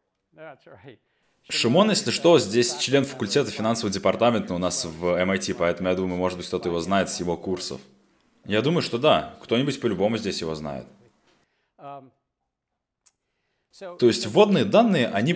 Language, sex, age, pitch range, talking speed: Russian, male, 20-39, 90-130 Hz, 145 wpm